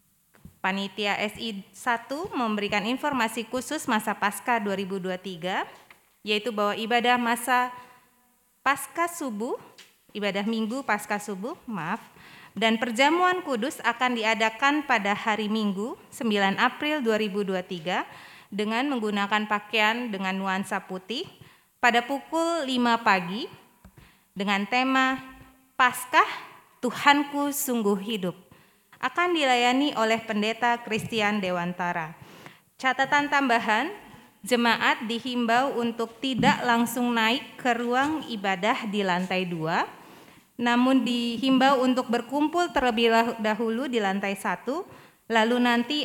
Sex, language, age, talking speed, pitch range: female, Indonesian, 20-39, 100 wpm, 205-255 Hz